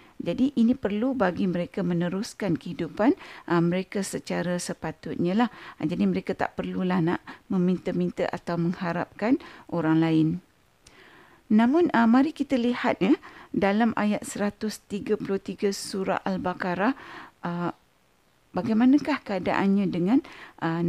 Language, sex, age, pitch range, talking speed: Malay, female, 50-69, 180-240 Hz, 110 wpm